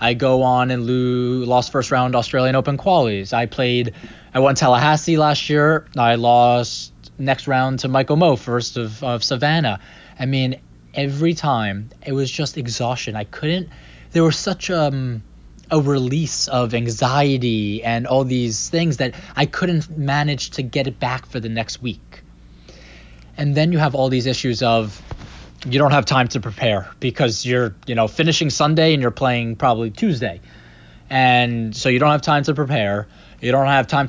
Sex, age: male, 20-39